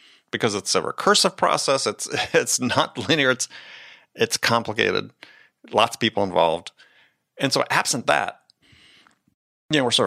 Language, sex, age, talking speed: English, male, 30-49, 145 wpm